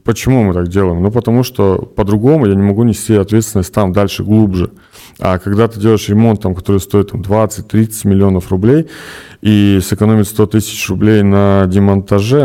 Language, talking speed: Russian, 165 wpm